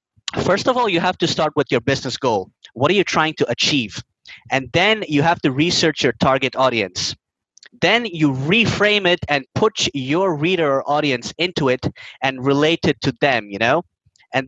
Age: 30-49